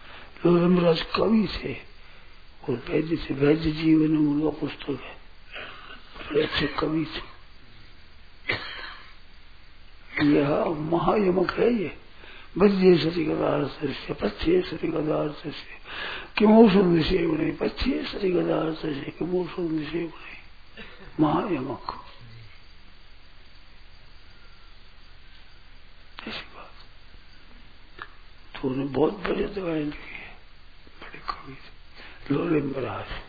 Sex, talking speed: male, 50 wpm